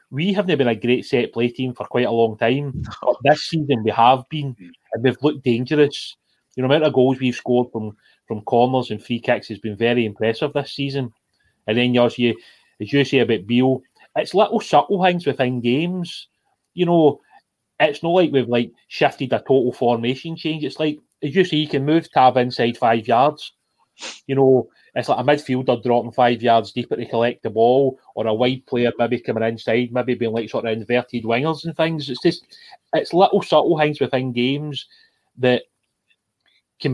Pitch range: 120-145 Hz